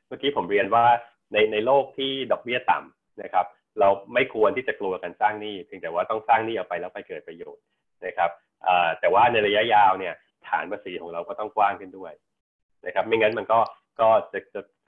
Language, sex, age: Thai, male, 20-39